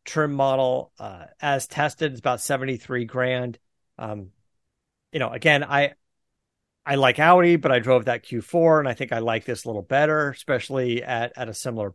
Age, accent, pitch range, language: 40-59, American, 110-145 Hz, English